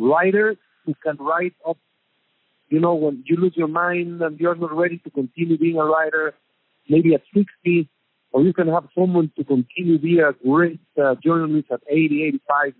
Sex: male